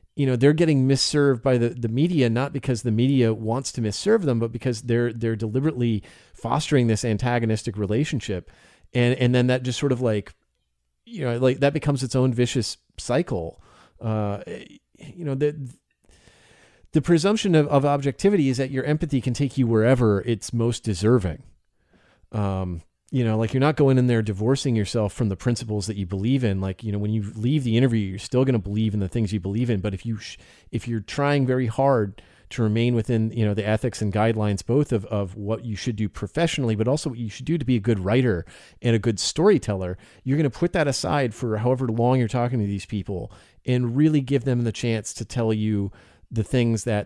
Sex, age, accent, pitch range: male, 30-49, American, 110-140 Hz